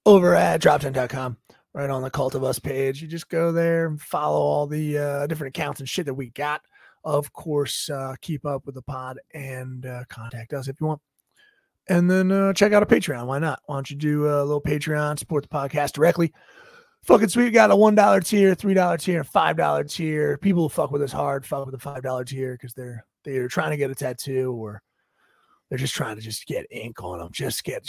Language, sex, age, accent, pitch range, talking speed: English, male, 30-49, American, 135-170 Hz, 225 wpm